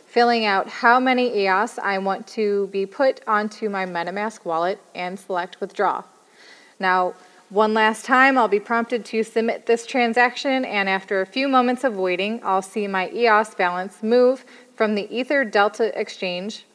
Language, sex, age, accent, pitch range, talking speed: English, female, 30-49, American, 200-240 Hz, 165 wpm